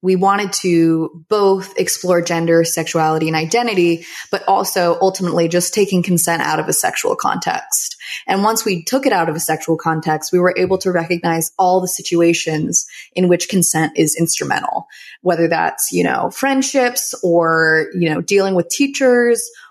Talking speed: 165 wpm